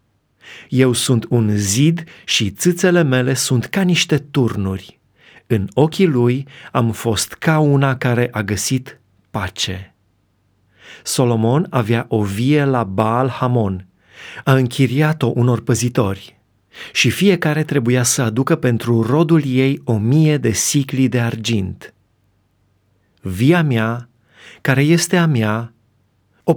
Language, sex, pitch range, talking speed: Romanian, male, 110-150 Hz, 120 wpm